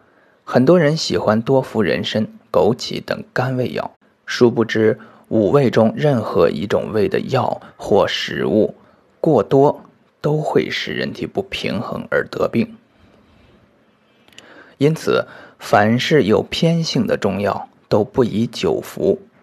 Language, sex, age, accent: Chinese, male, 20-39, native